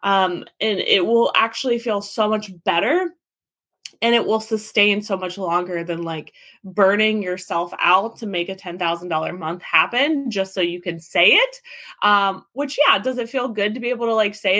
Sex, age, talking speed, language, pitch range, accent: female, 20-39, 190 wpm, English, 195-235 Hz, American